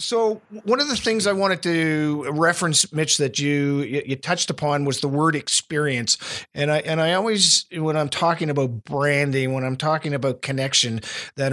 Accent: American